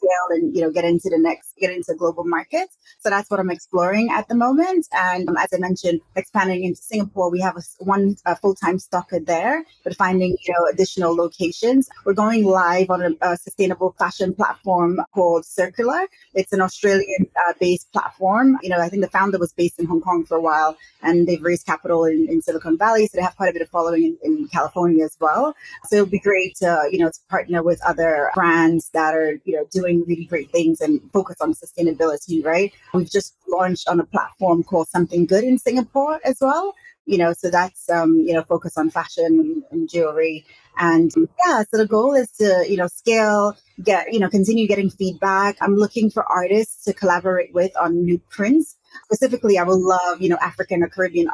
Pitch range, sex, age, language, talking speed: 170-200 Hz, female, 30-49, English, 210 wpm